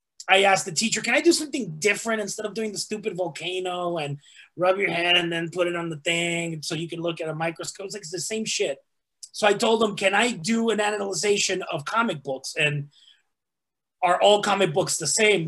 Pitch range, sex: 155-190 Hz, male